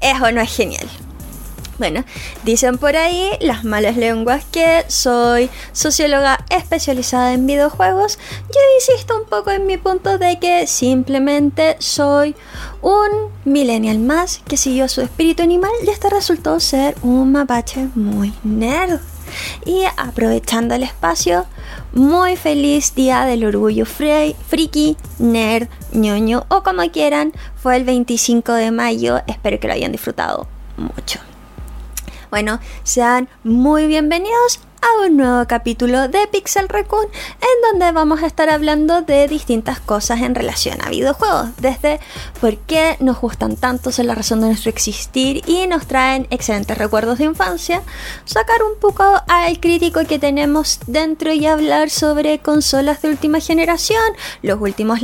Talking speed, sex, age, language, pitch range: 145 wpm, female, 20-39, Spanish, 240-345 Hz